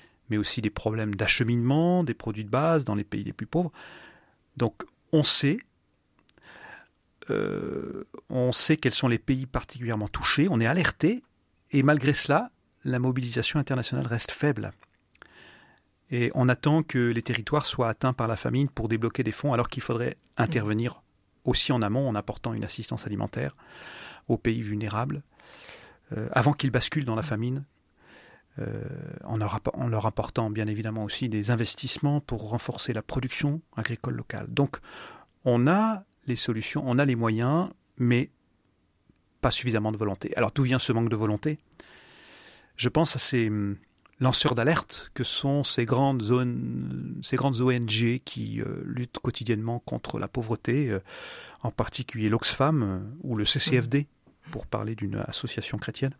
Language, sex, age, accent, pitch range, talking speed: French, male, 40-59, French, 110-135 Hz, 150 wpm